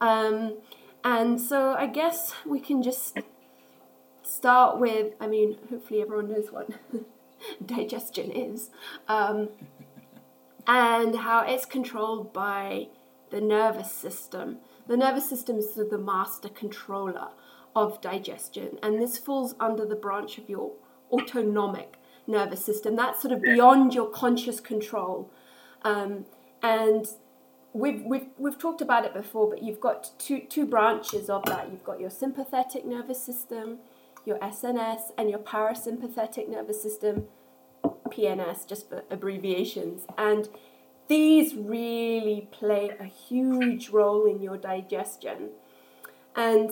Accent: British